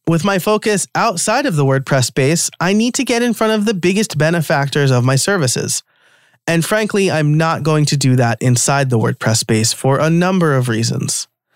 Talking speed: 195 wpm